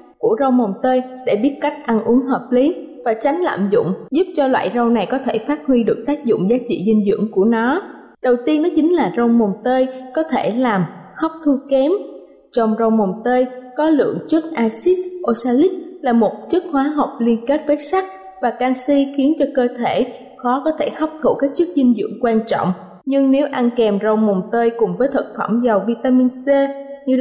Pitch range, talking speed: 230-290 Hz, 215 wpm